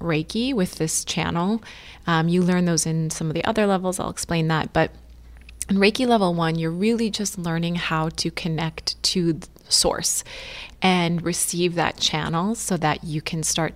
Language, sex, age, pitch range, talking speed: English, female, 20-39, 160-180 Hz, 180 wpm